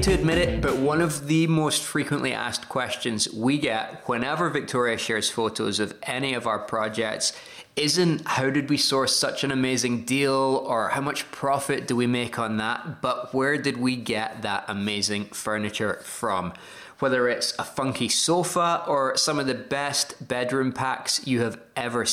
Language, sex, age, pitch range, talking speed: English, male, 20-39, 115-145 Hz, 175 wpm